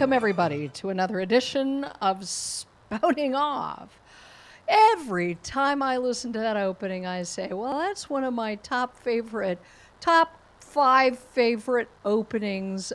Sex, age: female, 50-69